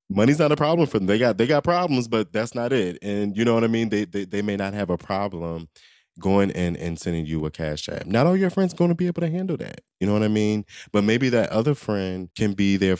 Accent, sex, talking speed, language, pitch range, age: American, male, 280 wpm, English, 85-105 Hz, 20-39